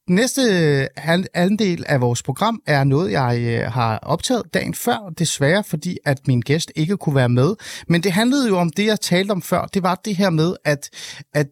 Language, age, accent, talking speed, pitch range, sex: Danish, 30-49, native, 210 wpm, 140-195 Hz, male